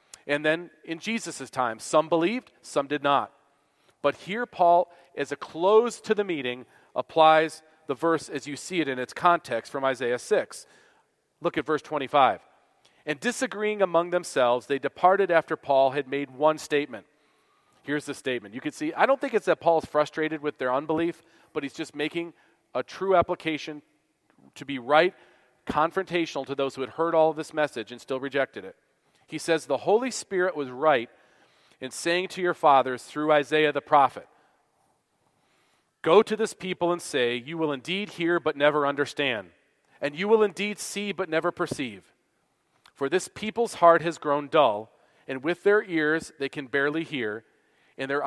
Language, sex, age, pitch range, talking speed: English, male, 40-59, 140-180 Hz, 175 wpm